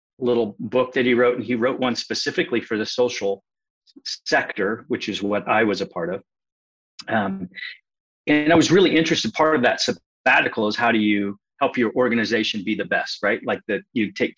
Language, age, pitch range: English, 30-49, 105-130 Hz